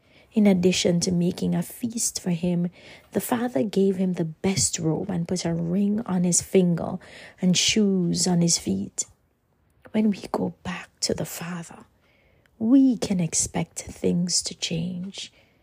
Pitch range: 175-205 Hz